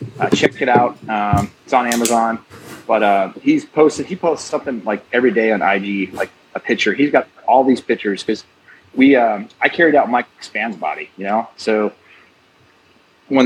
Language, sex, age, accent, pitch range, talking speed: English, male, 30-49, American, 105-130 Hz, 185 wpm